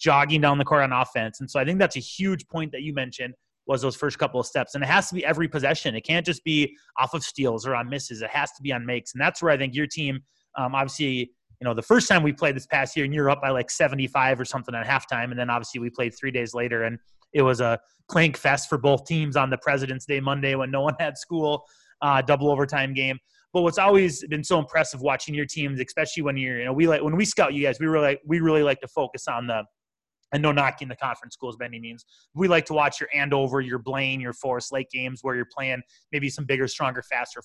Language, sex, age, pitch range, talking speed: English, male, 30-49, 125-145 Hz, 270 wpm